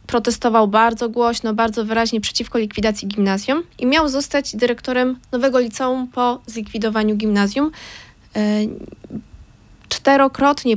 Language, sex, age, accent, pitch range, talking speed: Polish, female, 20-39, native, 210-245 Hz, 100 wpm